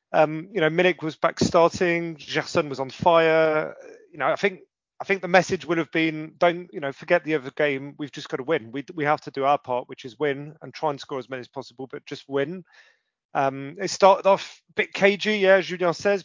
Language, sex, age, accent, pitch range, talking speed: English, male, 30-49, British, 145-175 Hz, 240 wpm